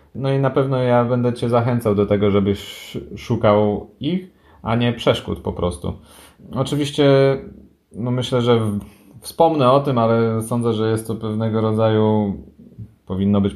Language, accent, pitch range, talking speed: Polish, native, 100-110 Hz, 150 wpm